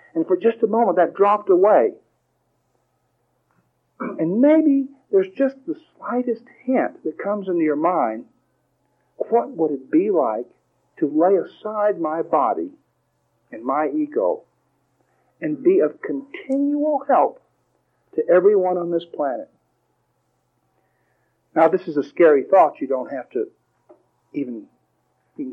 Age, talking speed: 50-69, 130 wpm